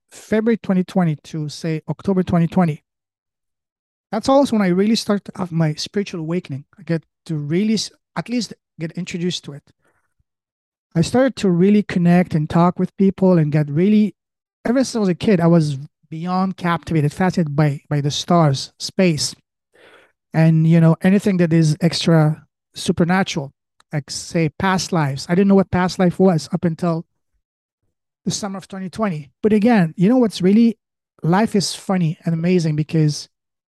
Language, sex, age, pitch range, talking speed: English, male, 30-49, 155-195 Hz, 160 wpm